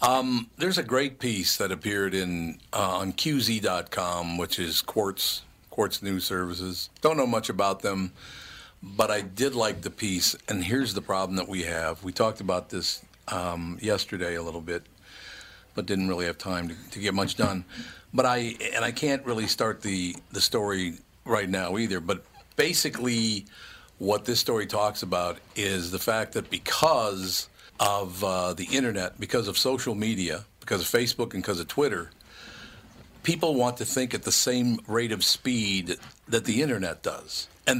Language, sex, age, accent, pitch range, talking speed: English, male, 50-69, American, 95-120 Hz, 175 wpm